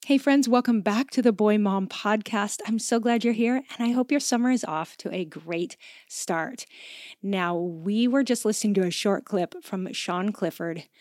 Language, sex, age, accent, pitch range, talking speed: English, female, 30-49, American, 185-230 Hz, 200 wpm